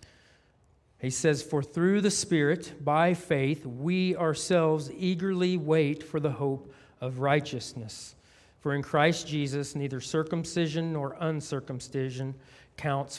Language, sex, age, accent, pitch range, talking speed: English, male, 40-59, American, 130-160 Hz, 120 wpm